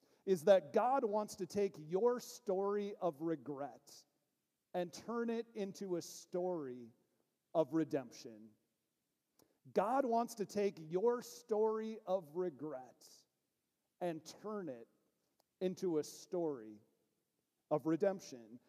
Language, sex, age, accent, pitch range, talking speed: English, male, 40-59, American, 160-215 Hz, 110 wpm